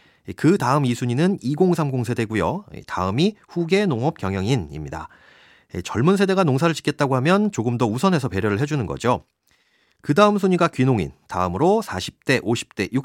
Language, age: Korean, 30-49